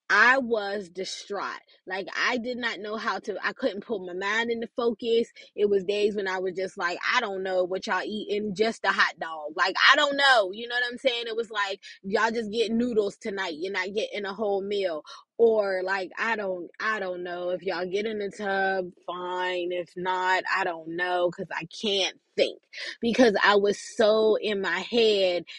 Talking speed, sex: 205 wpm, female